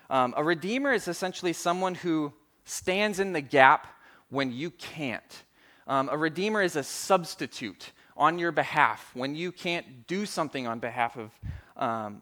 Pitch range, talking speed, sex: 130-175 Hz, 155 wpm, male